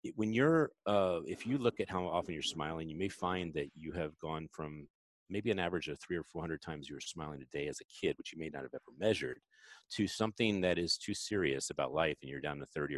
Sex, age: male, 40-59